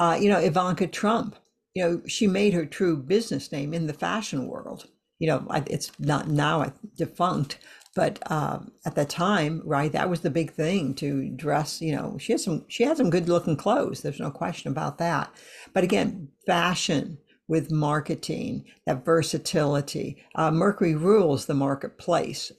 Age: 60-79